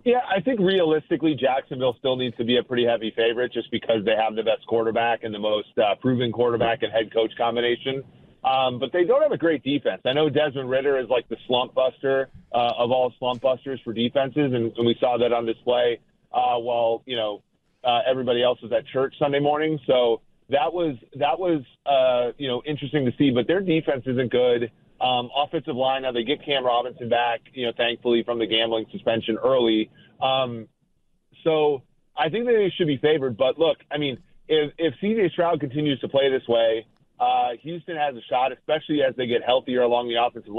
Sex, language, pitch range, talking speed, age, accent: male, English, 120-145 Hz, 205 wpm, 30-49, American